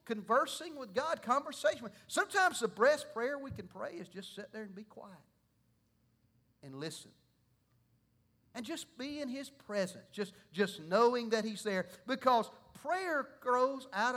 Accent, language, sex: American, English, male